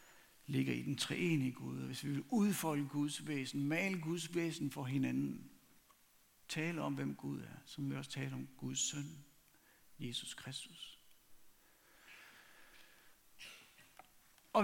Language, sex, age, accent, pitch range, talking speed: Danish, male, 60-79, native, 135-180 Hz, 135 wpm